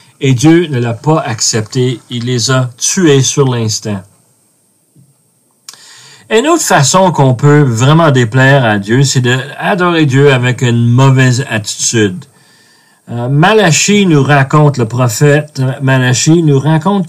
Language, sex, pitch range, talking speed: French, male, 130-160 Hz, 125 wpm